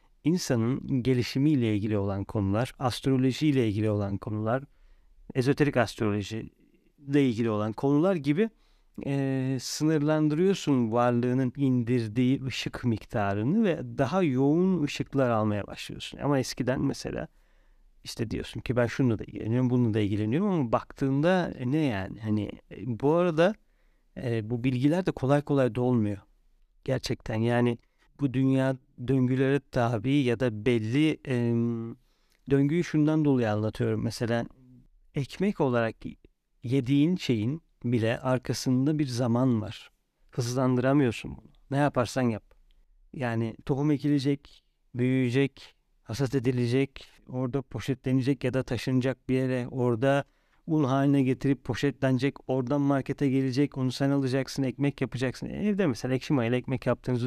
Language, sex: Turkish, male